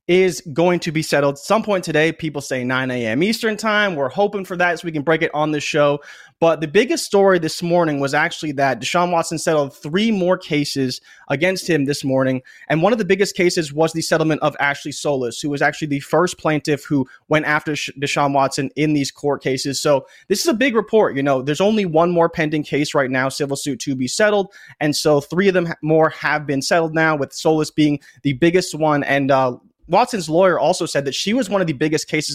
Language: English